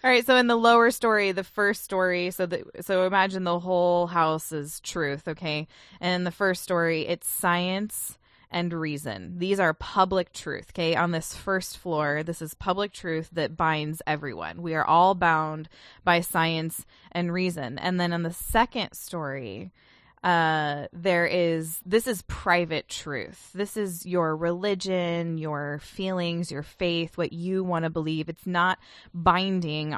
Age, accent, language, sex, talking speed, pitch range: 20-39, American, English, female, 165 wpm, 160-190 Hz